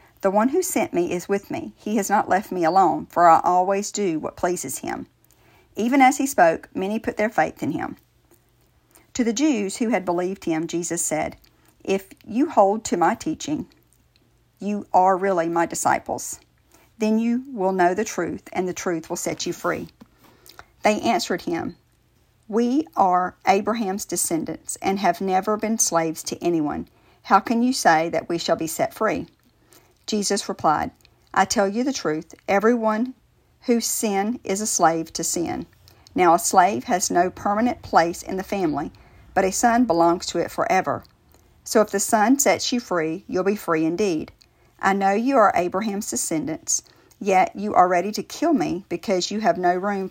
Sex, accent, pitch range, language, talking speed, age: female, American, 175-225 Hz, English, 180 wpm, 50-69